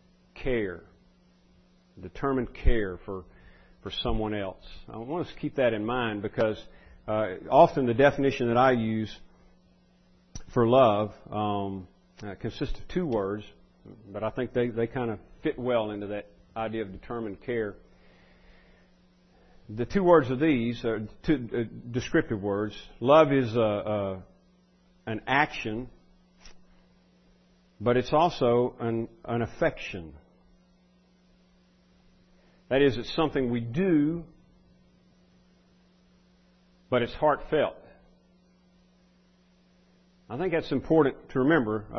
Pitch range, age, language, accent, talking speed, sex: 90-140 Hz, 50-69, English, American, 120 wpm, male